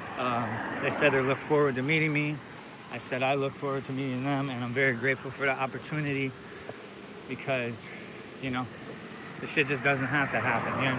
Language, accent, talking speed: English, American, 215 wpm